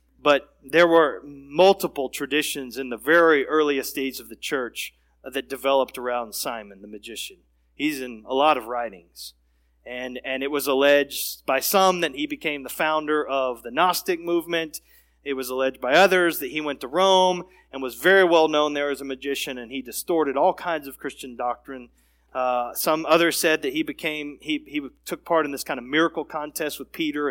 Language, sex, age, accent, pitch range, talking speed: English, male, 30-49, American, 125-170 Hz, 190 wpm